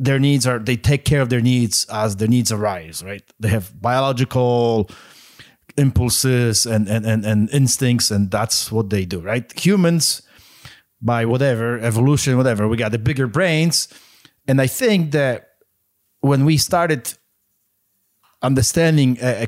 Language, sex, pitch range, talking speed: English, male, 105-135 Hz, 150 wpm